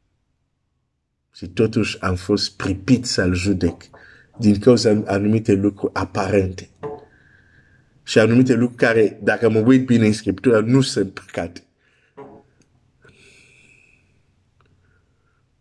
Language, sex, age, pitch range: Romanian, male, 50-69, 105-125 Hz